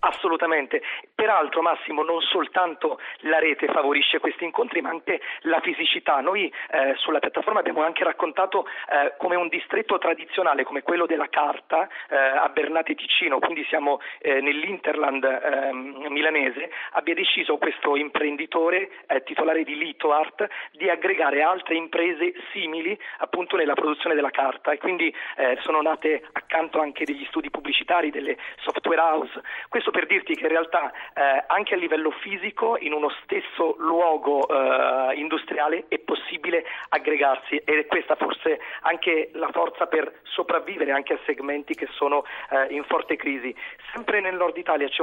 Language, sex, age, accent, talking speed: Italian, male, 40-59, native, 150 wpm